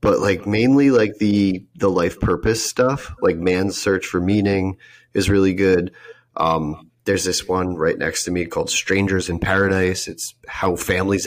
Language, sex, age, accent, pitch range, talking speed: English, male, 30-49, American, 90-110 Hz, 170 wpm